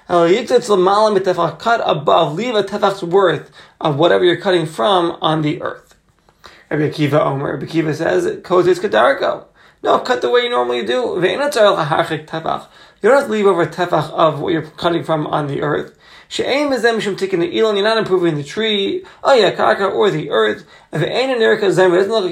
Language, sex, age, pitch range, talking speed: English, male, 30-49, 165-215 Hz, 155 wpm